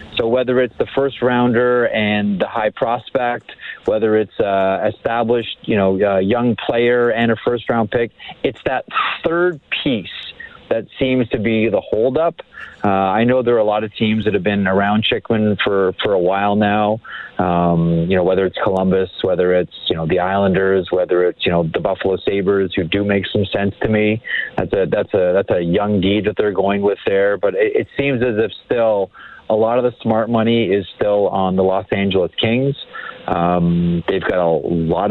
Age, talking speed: 40-59, 200 wpm